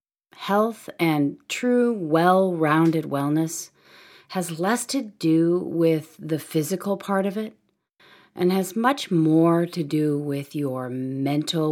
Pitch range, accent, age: 145-185 Hz, American, 40-59